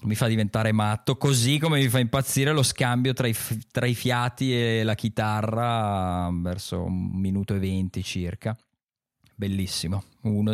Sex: male